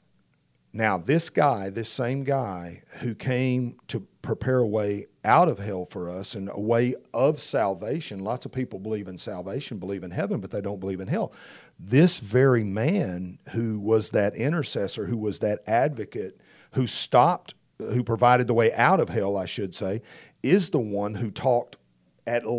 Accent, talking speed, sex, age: American, 175 wpm, male, 40-59